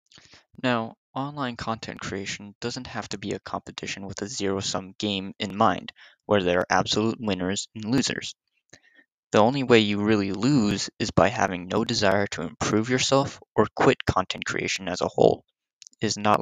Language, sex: English, male